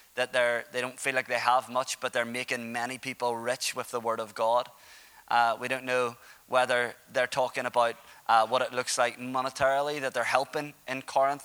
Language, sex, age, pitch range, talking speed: English, male, 20-39, 120-140 Hz, 205 wpm